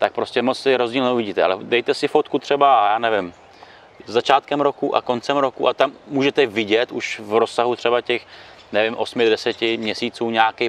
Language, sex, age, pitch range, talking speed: Czech, male, 30-49, 110-130 Hz, 170 wpm